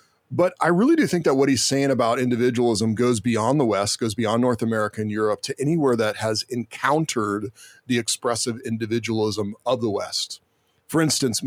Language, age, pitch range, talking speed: English, 40-59, 110-130 Hz, 180 wpm